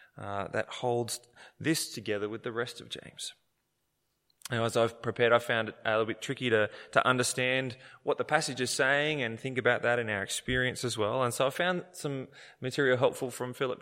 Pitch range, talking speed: 115-145 Hz, 205 wpm